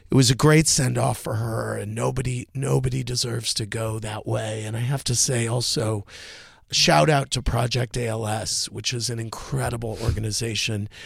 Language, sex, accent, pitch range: English, male, American, 105-135 Hz